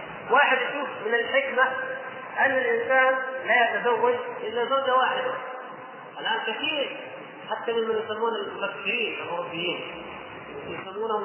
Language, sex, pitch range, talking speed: Arabic, male, 225-280 Hz, 100 wpm